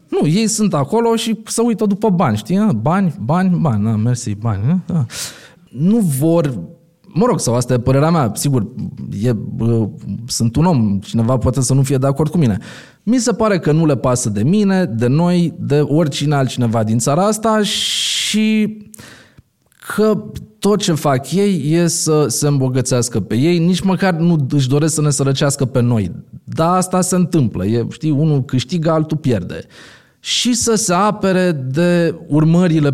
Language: Romanian